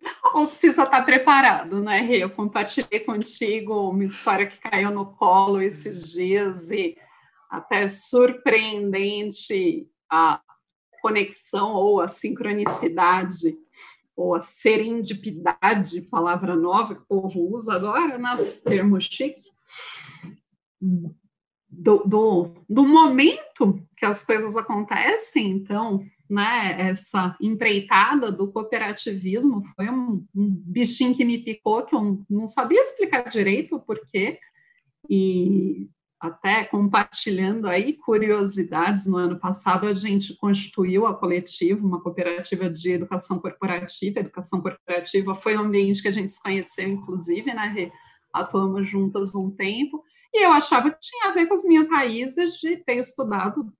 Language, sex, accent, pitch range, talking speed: Portuguese, female, Brazilian, 190-245 Hz, 130 wpm